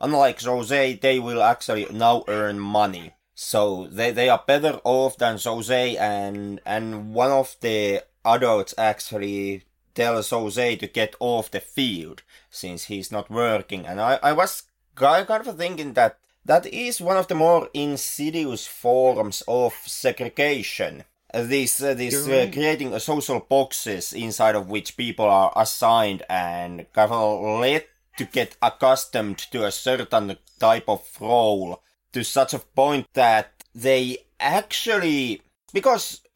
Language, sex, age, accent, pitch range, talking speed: English, male, 30-49, Finnish, 105-135 Hz, 145 wpm